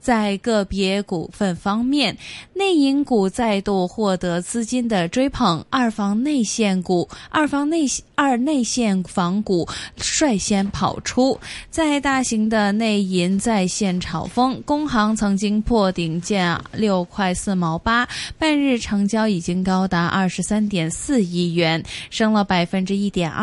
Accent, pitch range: native, 185-235 Hz